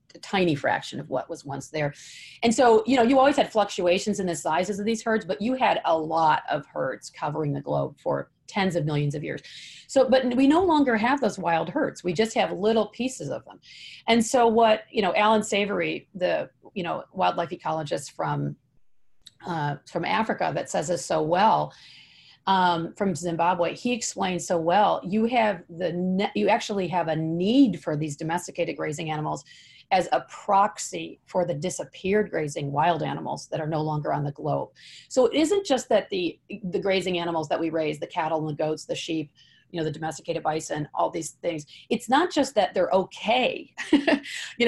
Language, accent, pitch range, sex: English, American, 160-220 Hz, female